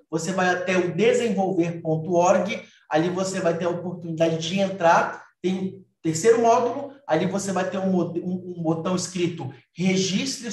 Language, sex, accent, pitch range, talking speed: Portuguese, male, Brazilian, 165-215 Hz, 140 wpm